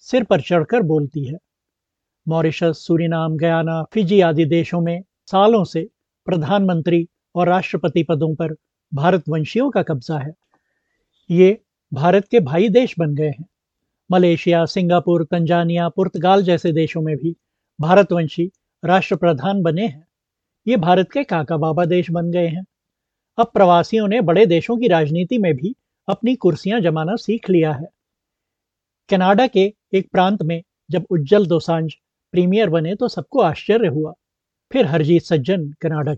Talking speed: 140 wpm